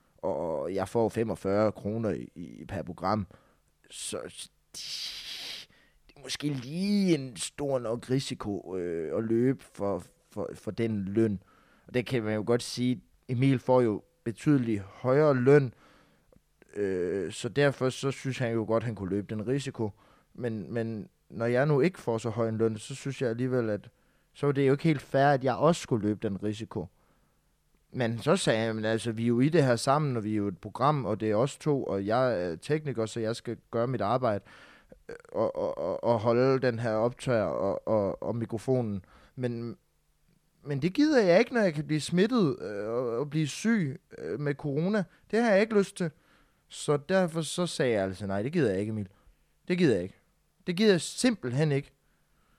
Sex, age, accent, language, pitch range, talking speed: male, 20-39, native, Danish, 110-150 Hz, 195 wpm